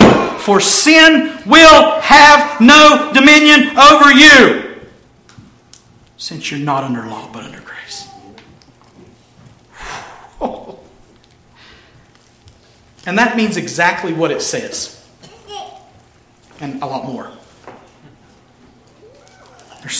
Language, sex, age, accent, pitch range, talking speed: English, male, 40-59, American, 125-170 Hz, 85 wpm